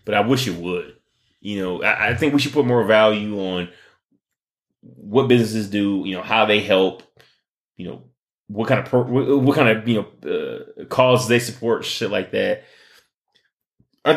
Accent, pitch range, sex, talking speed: American, 95-120 Hz, male, 185 wpm